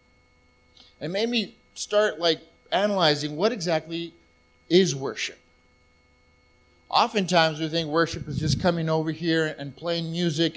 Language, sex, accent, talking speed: English, male, American, 125 wpm